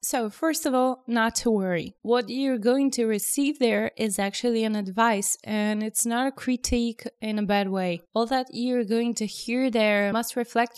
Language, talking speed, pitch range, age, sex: English, 195 wpm, 205-240 Hz, 20-39, female